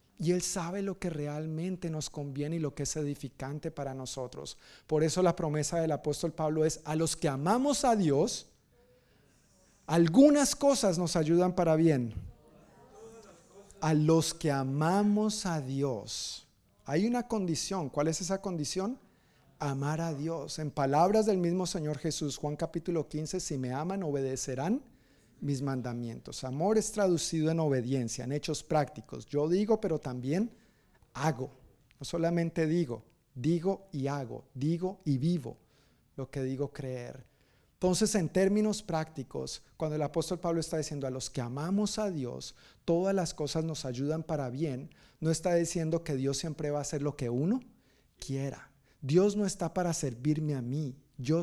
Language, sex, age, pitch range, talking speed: Spanish, male, 50-69, 140-175 Hz, 160 wpm